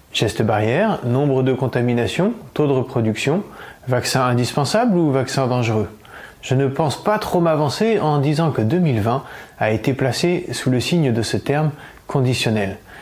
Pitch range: 120-155 Hz